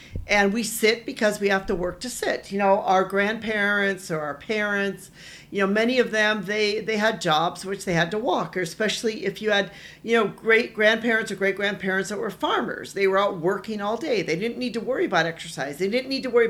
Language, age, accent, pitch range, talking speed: English, 50-69, American, 175-220 Hz, 230 wpm